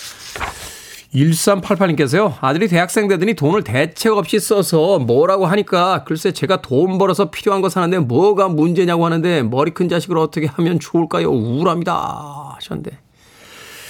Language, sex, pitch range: Korean, male, 130-200 Hz